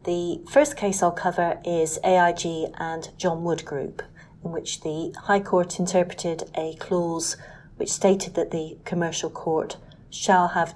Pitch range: 160-200 Hz